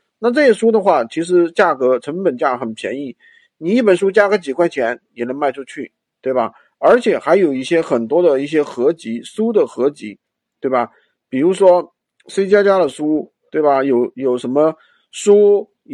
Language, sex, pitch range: Chinese, male, 140-200 Hz